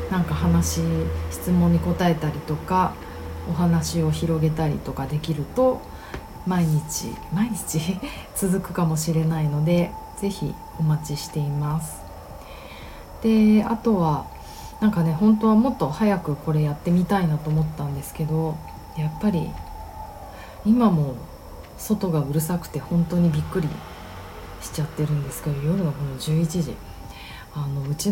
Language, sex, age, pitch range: Japanese, female, 40-59, 145-185 Hz